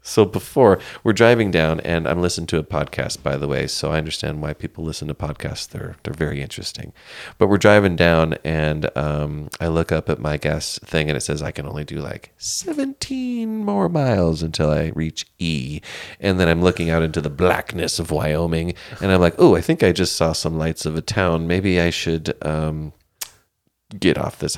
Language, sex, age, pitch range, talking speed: English, male, 30-49, 80-95 Hz, 210 wpm